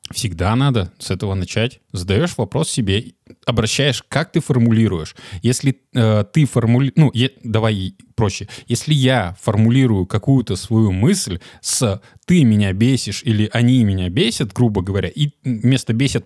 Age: 20-39